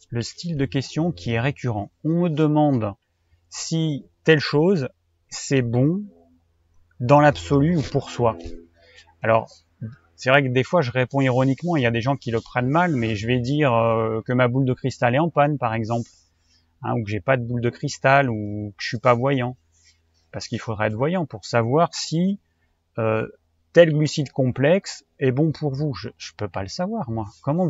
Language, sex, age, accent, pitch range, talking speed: French, male, 30-49, French, 110-145 Hz, 200 wpm